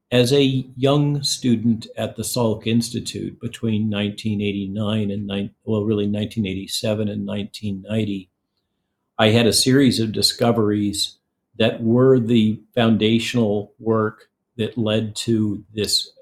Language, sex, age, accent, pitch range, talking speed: English, male, 50-69, American, 105-115 Hz, 115 wpm